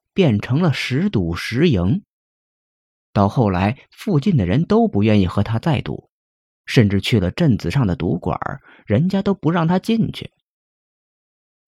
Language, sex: Chinese, male